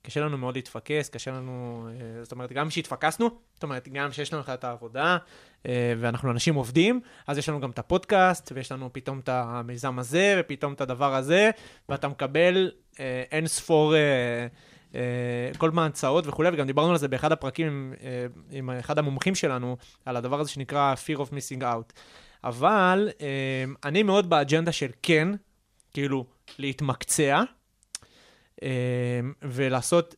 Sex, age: male, 20-39